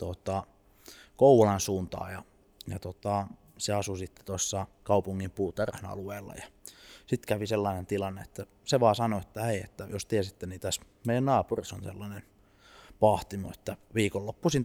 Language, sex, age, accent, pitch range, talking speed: Finnish, male, 20-39, native, 95-115 Hz, 145 wpm